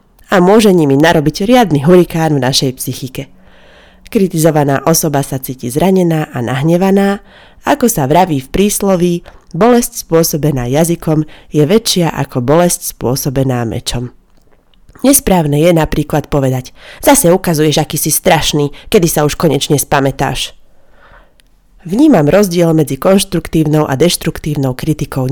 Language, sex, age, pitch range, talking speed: Slovak, female, 30-49, 140-180 Hz, 120 wpm